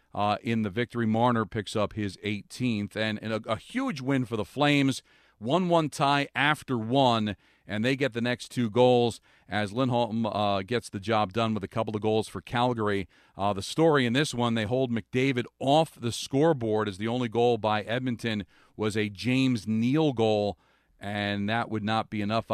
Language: English